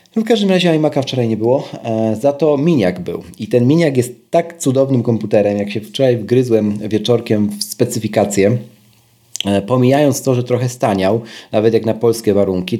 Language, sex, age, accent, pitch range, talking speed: Polish, male, 30-49, native, 110-140 Hz, 165 wpm